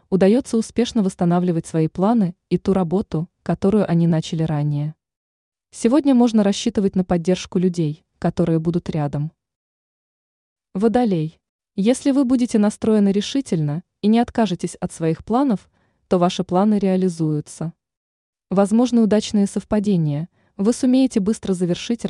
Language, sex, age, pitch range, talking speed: Russian, female, 20-39, 170-220 Hz, 120 wpm